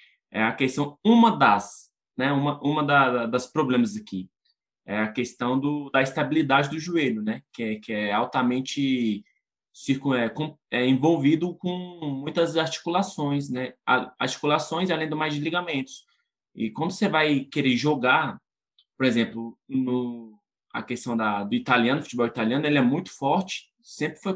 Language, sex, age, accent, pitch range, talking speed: Portuguese, male, 20-39, Brazilian, 125-175 Hz, 155 wpm